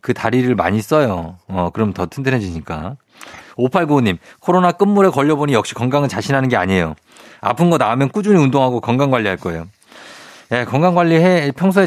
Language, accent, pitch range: Korean, native, 105-150 Hz